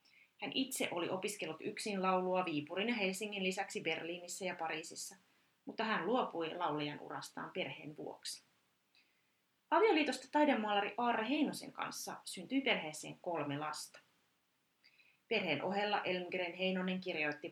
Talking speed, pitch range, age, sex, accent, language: 115 wpm, 175-220 Hz, 30-49, female, native, Finnish